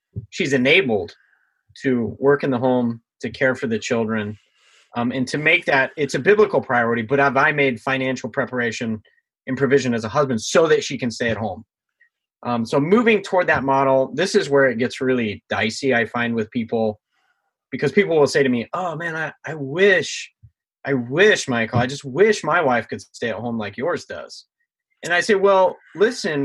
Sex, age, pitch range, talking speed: male, 30-49, 115-150 Hz, 195 wpm